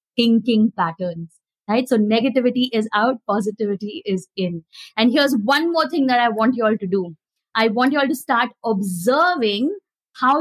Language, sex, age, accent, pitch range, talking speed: English, female, 20-39, Indian, 225-310 Hz, 175 wpm